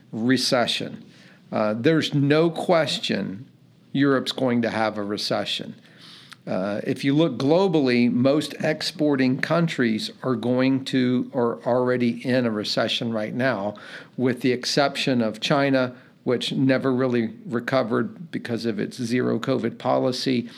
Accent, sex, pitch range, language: American, male, 120-145 Hz, English